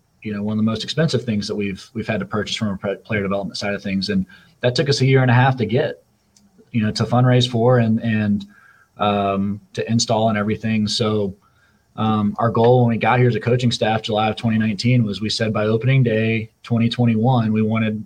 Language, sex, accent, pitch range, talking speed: English, male, American, 105-115 Hz, 225 wpm